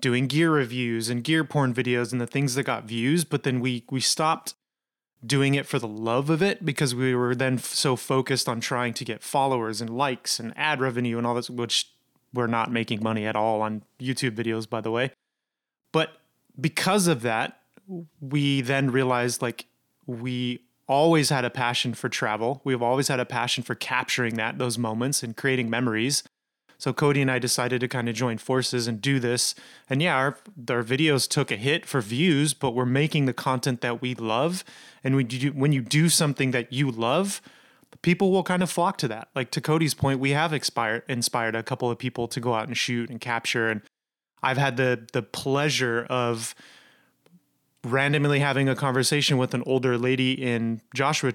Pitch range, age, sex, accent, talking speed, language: 120-145 Hz, 30-49, male, American, 195 wpm, English